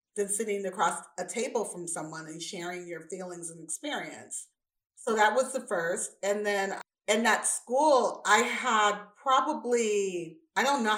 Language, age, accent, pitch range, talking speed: English, 40-59, American, 170-220 Hz, 160 wpm